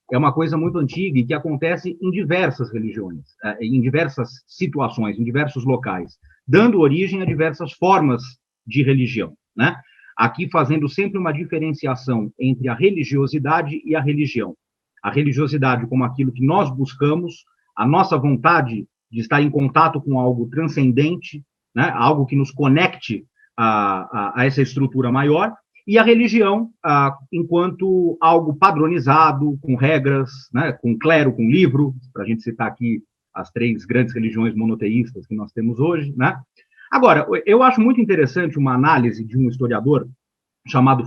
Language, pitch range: Portuguese, 125-160 Hz